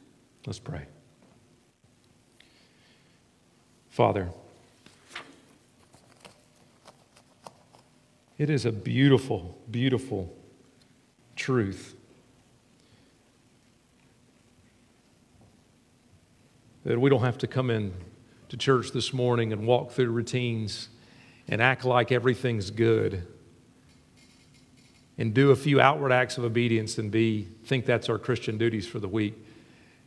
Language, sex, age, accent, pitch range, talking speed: English, male, 50-69, American, 115-140 Hz, 95 wpm